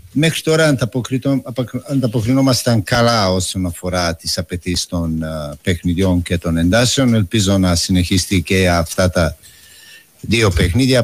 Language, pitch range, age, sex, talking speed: Greek, 95-130 Hz, 50-69, male, 110 wpm